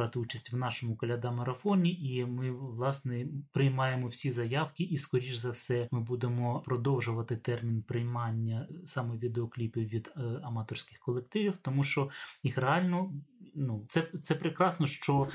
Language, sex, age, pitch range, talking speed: Ukrainian, male, 30-49, 120-150 Hz, 135 wpm